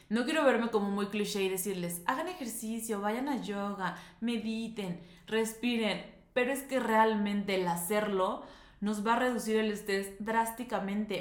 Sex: female